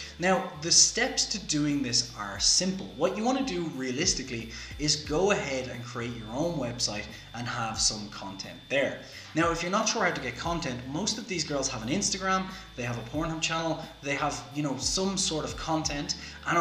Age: 20-39